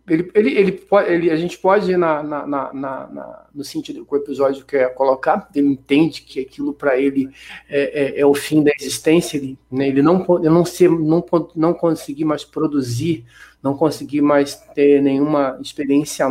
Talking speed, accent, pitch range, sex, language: 190 wpm, Brazilian, 140-185 Hz, male, Portuguese